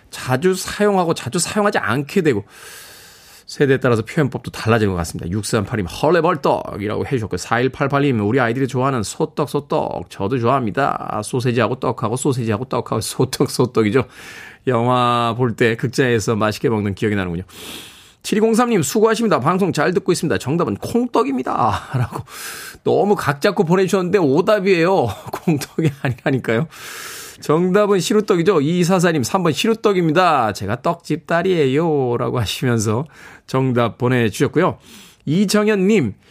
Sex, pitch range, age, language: male, 120-175 Hz, 20-39, Korean